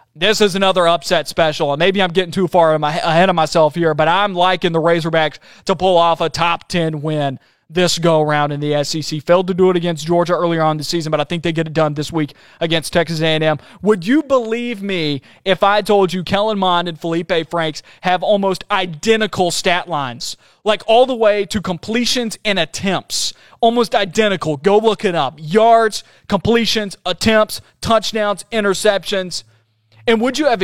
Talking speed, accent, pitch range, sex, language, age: 190 wpm, American, 160-200 Hz, male, English, 30-49